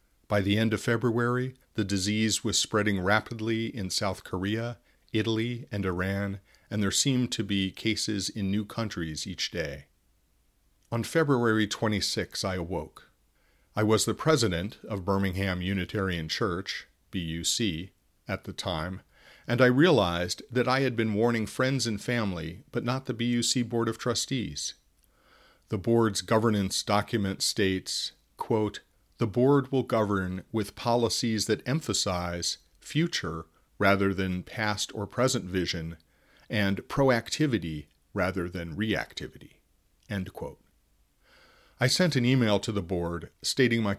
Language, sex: English, male